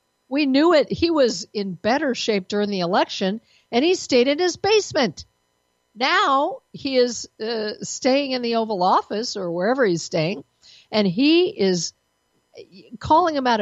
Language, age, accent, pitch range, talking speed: English, 50-69, American, 180-280 Hz, 160 wpm